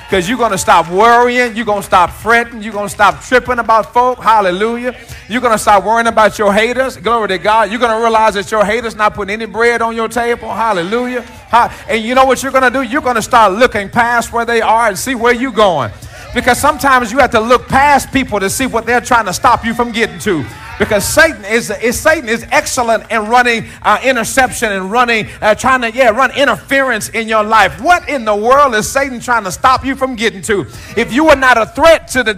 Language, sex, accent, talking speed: English, male, American, 240 wpm